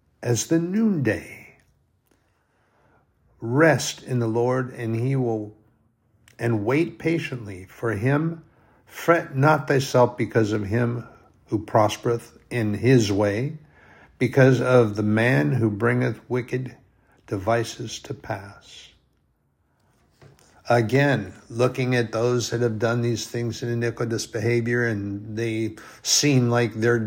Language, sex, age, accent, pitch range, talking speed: English, male, 60-79, American, 110-130 Hz, 115 wpm